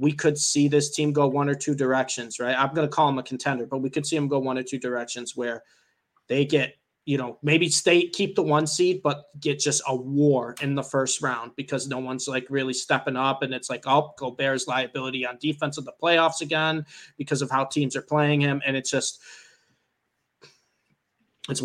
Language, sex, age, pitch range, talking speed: English, male, 20-39, 135-160 Hz, 220 wpm